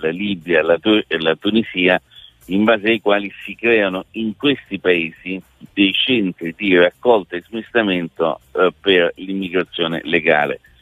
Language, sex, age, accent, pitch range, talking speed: Italian, male, 50-69, native, 90-110 Hz, 145 wpm